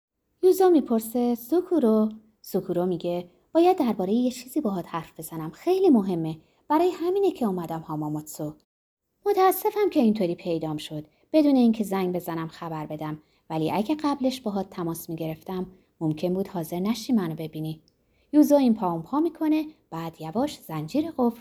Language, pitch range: Persian, 165-280 Hz